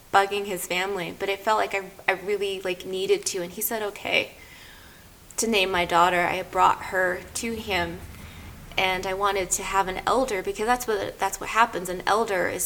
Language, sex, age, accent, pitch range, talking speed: English, female, 20-39, American, 185-230 Hz, 200 wpm